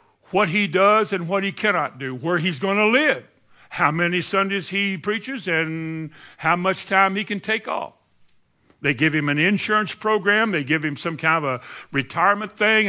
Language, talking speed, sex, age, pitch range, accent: English, 190 wpm, male, 60-79, 155-210 Hz, American